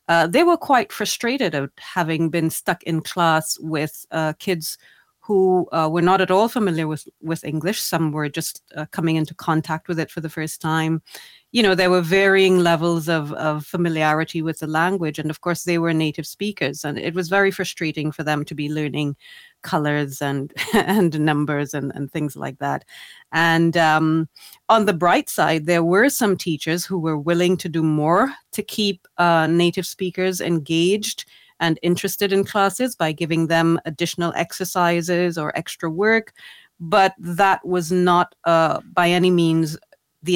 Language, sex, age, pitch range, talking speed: Finnish, female, 30-49, 155-180 Hz, 175 wpm